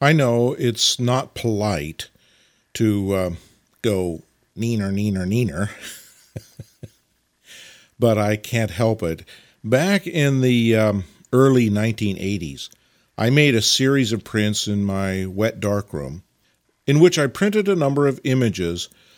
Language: English